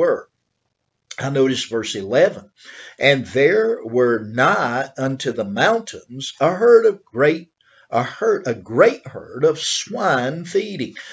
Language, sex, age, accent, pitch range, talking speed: English, male, 50-69, American, 130-185 Hz, 130 wpm